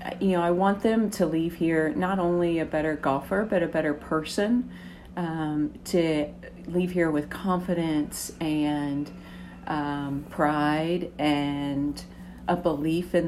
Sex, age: female, 40-59